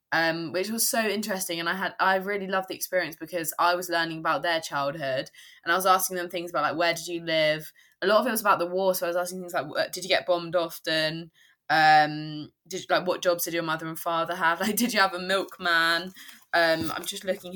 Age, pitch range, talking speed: 20-39, 160-185 Hz, 245 wpm